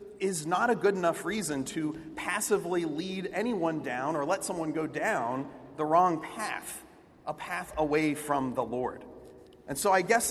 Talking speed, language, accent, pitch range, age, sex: 170 wpm, English, American, 160-210 Hz, 40-59, male